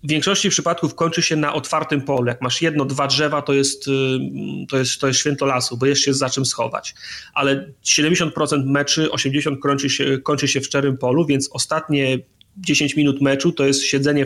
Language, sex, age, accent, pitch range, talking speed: Polish, male, 30-49, native, 135-150 Hz, 200 wpm